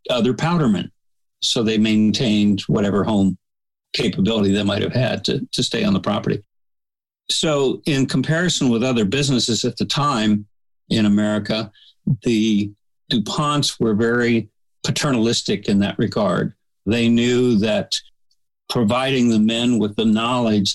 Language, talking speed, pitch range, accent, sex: English, 135 wpm, 100-120 Hz, American, male